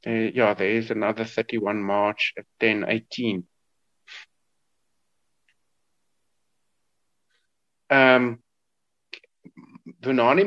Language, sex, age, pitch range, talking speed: English, male, 50-69, 115-145 Hz, 65 wpm